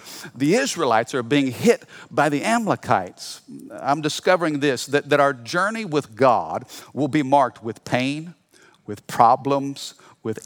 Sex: male